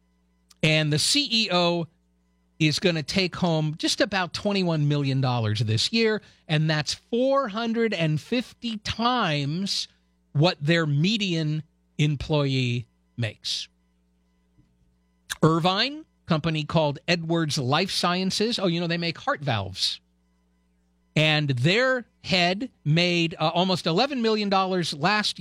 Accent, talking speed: American, 110 wpm